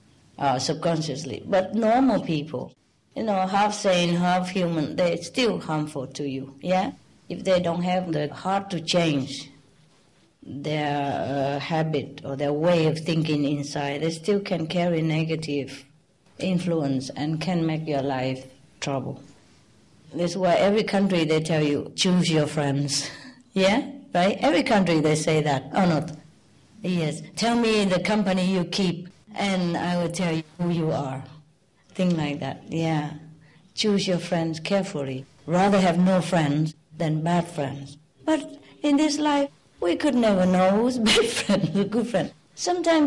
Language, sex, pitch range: English, female, 155-210 Hz